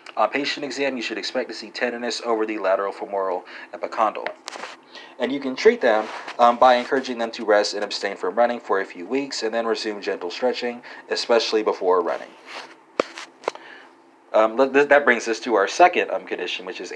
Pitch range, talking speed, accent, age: 110-130 Hz, 190 wpm, American, 30-49